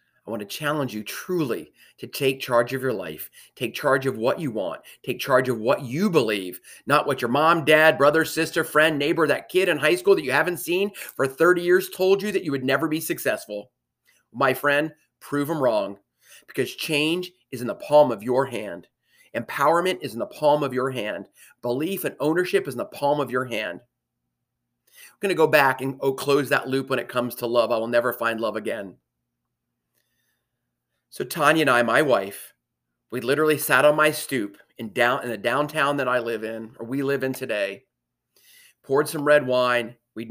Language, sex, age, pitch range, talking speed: English, male, 30-49, 115-150 Hz, 200 wpm